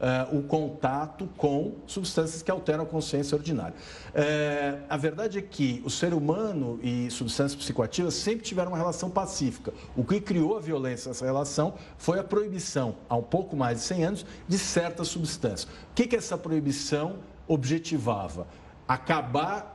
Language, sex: Portuguese, male